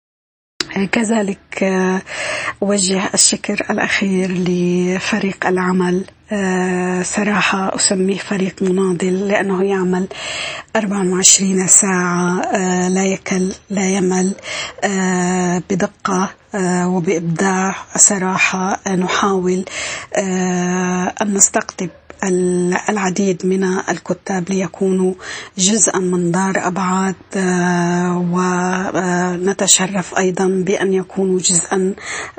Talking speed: 70 wpm